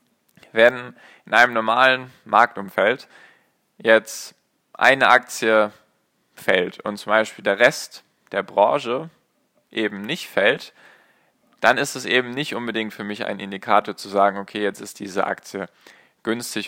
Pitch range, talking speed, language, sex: 105-125 Hz, 135 wpm, German, male